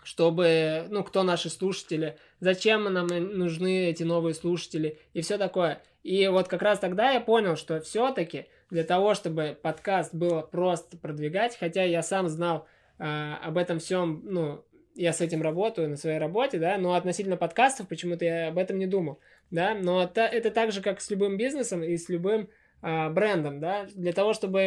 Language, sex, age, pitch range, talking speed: Russian, male, 20-39, 160-195 Hz, 180 wpm